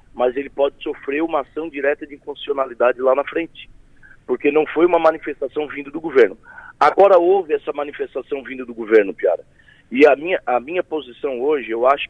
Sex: male